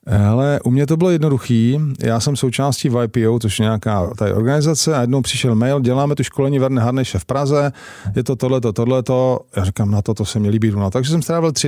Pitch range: 115-145 Hz